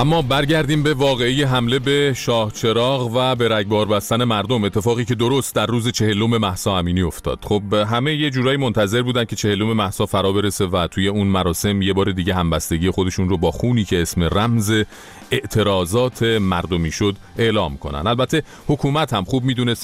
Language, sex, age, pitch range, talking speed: Persian, male, 40-59, 95-125 Hz, 170 wpm